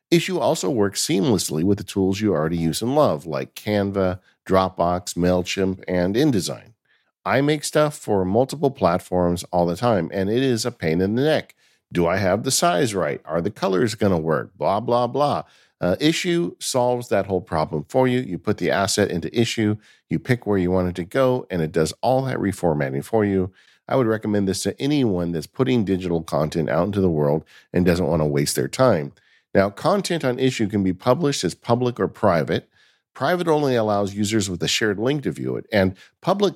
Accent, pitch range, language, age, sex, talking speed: American, 90-125 Hz, English, 50-69, male, 205 wpm